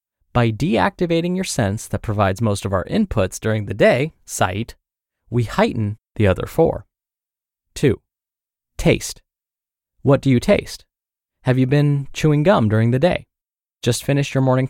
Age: 20-39